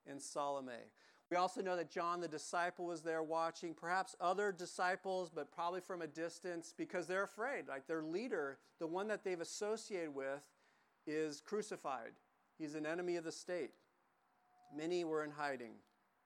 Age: 40-59